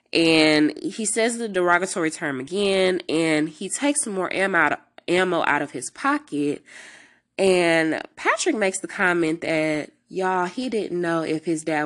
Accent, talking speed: American, 145 wpm